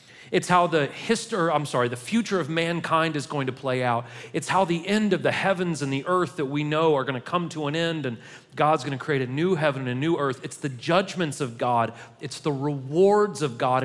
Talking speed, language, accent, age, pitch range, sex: 245 wpm, English, American, 40-59, 135-185 Hz, male